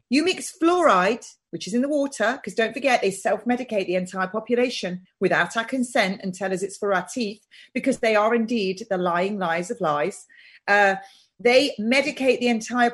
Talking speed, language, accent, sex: 185 wpm, English, British, female